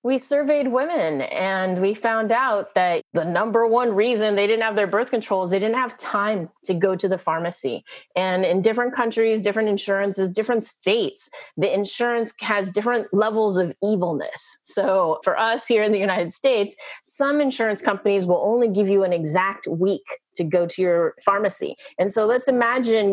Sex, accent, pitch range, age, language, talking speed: female, American, 195-255 Hz, 30-49, English, 180 wpm